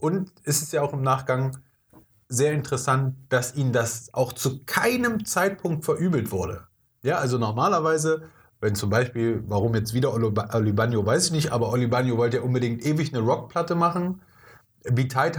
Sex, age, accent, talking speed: male, 30-49, German, 165 wpm